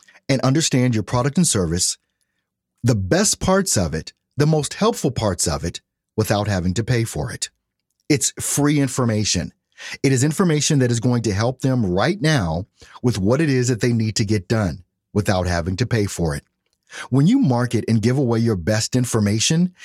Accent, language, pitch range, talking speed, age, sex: American, English, 95-130 Hz, 185 wpm, 40-59, male